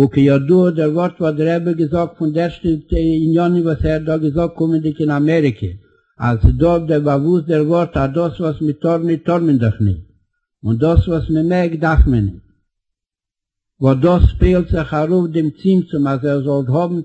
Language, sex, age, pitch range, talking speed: English, male, 60-79, 145-175 Hz, 200 wpm